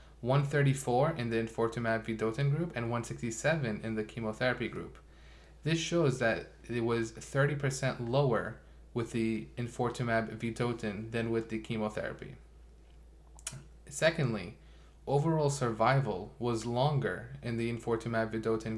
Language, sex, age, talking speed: English, male, 20-39, 105 wpm